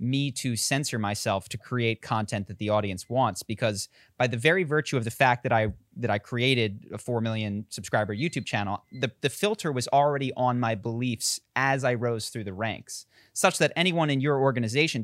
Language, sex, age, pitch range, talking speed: English, male, 30-49, 110-135 Hz, 200 wpm